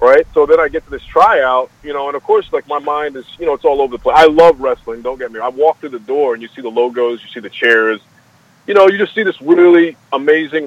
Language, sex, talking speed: English, male, 300 wpm